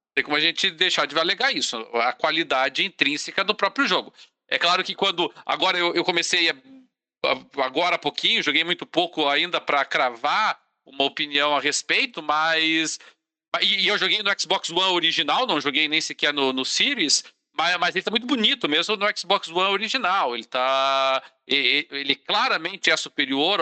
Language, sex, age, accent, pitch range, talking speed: Portuguese, male, 40-59, Brazilian, 145-195 Hz, 180 wpm